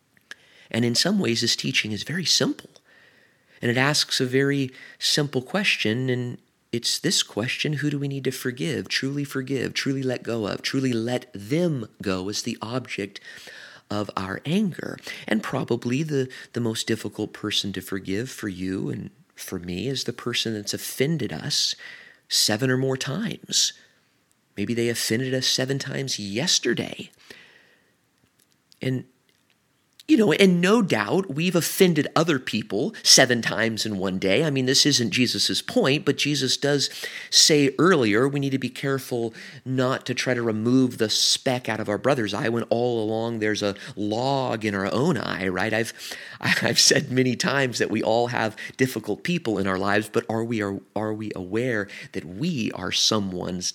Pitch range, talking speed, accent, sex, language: 105-135 Hz, 170 wpm, American, male, English